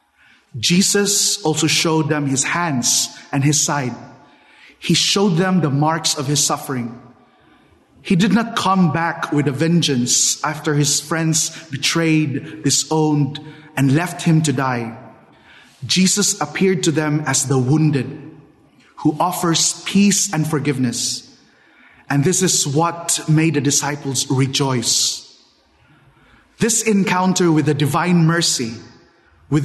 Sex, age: male, 20-39